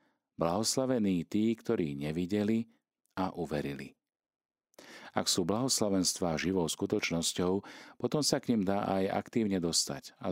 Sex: male